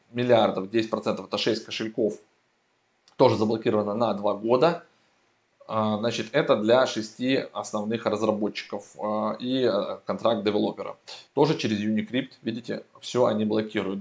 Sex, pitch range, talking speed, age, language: male, 110-140 Hz, 125 wpm, 20-39, Russian